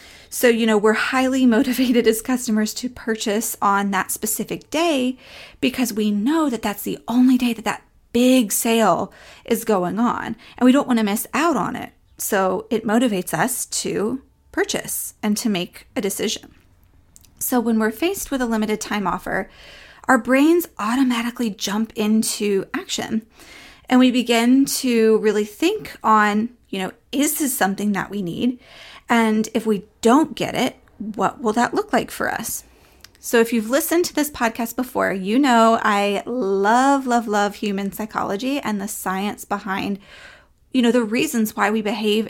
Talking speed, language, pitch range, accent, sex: 170 wpm, English, 205-255 Hz, American, female